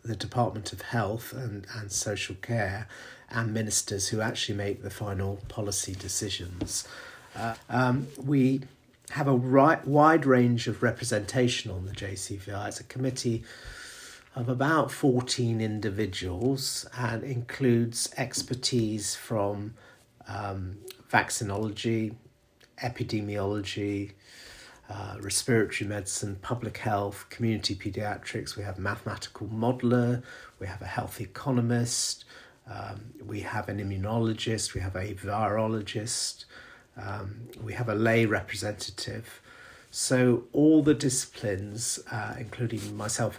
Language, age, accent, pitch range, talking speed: English, 50-69, British, 100-125 Hz, 110 wpm